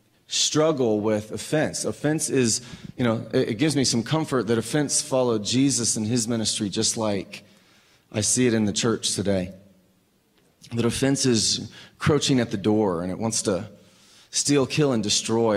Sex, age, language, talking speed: male, 30-49, English, 170 wpm